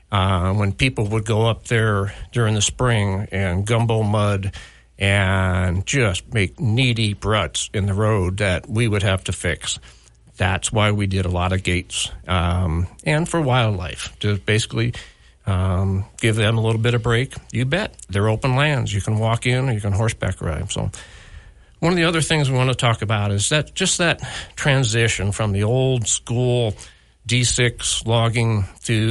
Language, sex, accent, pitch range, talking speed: English, male, American, 100-120 Hz, 175 wpm